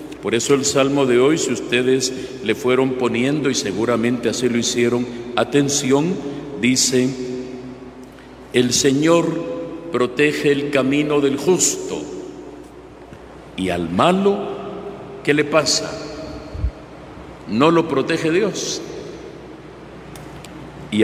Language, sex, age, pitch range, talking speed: Spanish, male, 50-69, 115-150 Hz, 105 wpm